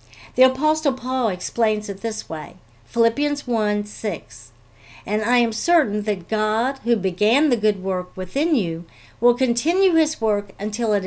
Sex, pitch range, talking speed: female, 175-245 Hz, 155 wpm